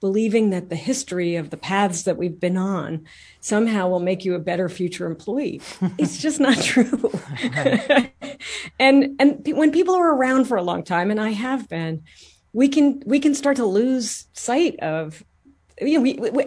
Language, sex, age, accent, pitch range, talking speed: English, female, 40-59, American, 170-230 Hz, 190 wpm